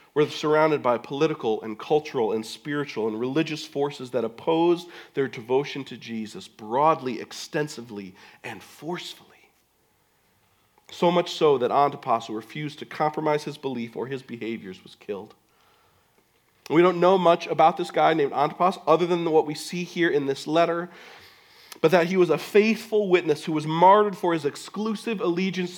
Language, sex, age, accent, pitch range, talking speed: English, male, 40-59, American, 150-195 Hz, 160 wpm